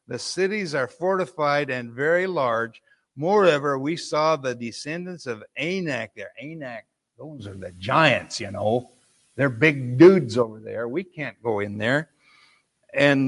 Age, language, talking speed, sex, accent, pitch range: 60-79, English, 150 wpm, male, American, 135-175 Hz